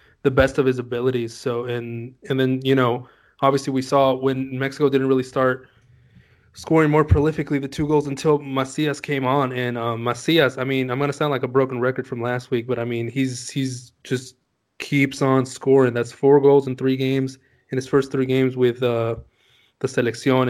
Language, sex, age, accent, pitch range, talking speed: English, male, 20-39, American, 125-140 Hz, 200 wpm